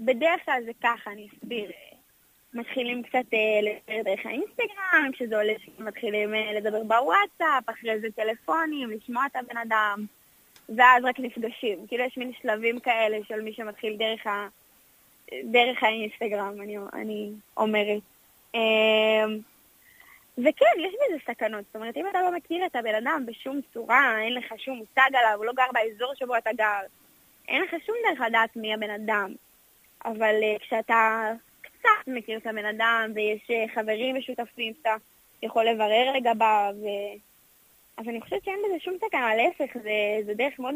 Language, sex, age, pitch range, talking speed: Hebrew, female, 20-39, 215-255 Hz, 155 wpm